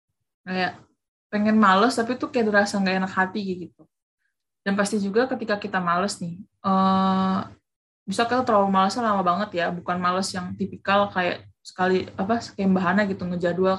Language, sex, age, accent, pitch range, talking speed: Indonesian, female, 20-39, native, 185-215 Hz, 155 wpm